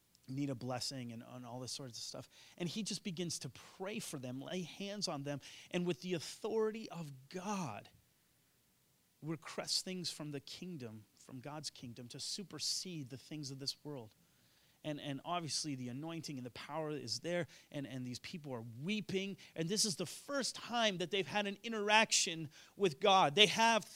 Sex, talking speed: male, 185 wpm